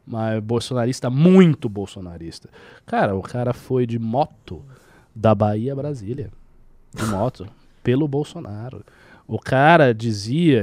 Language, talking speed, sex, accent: Portuguese, 105 wpm, male, Brazilian